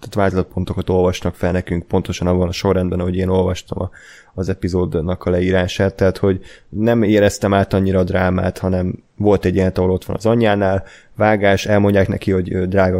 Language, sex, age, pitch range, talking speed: Hungarian, male, 20-39, 95-105 Hz, 175 wpm